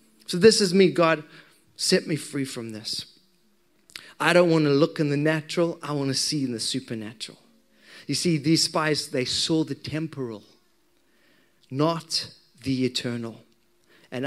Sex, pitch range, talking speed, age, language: male, 125-170 Hz, 155 wpm, 30-49, English